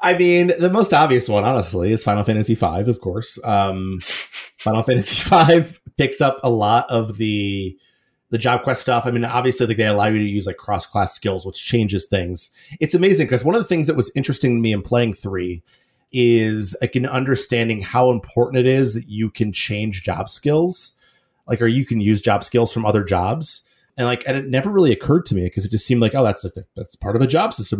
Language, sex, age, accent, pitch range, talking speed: English, male, 30-49, American, 105-130 Hz, 225 wpm